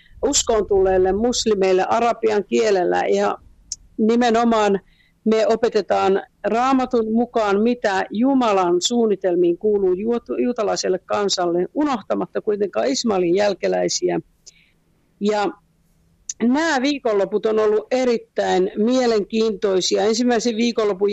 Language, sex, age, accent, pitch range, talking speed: Finnish, female, 50-69, native, 195-235 Hz, 85 wpm